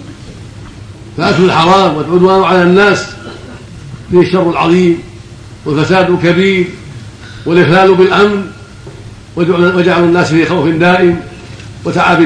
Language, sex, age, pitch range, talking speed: Arabic, male, 60-79, 115-175 Hz, 90 wpm